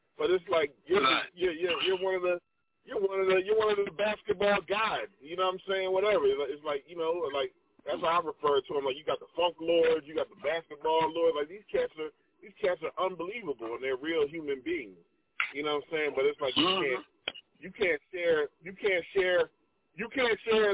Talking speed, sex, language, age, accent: 235 wpm, male, English, 20-39, American